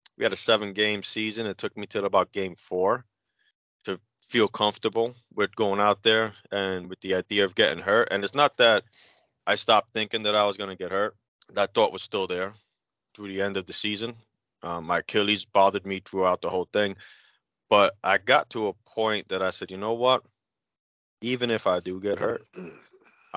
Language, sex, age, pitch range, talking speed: English, male, 30-49, 95-105 Hz, 200 wpm